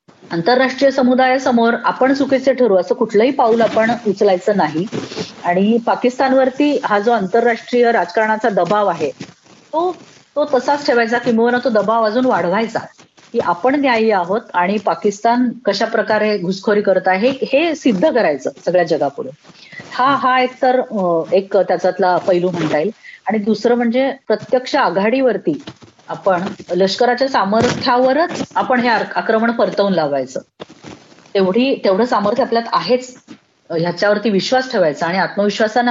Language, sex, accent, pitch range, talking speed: Marathi, female, native, 190-250 Hz, 125 wpm